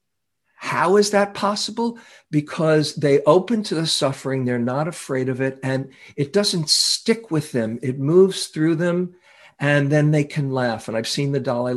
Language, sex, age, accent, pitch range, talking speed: English, male, 50-69, American, 120-150 Hz, 180 wpm